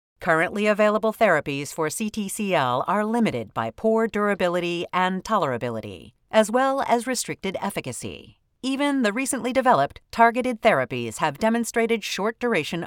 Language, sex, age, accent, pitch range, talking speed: English, female, 40-59, American, 160-230 Hz, 125 wpm